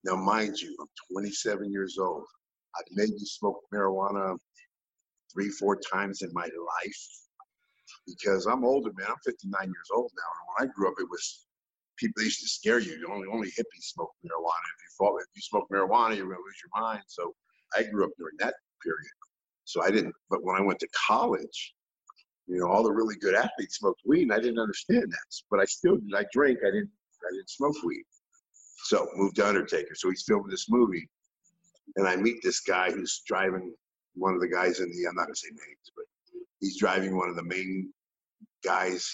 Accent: American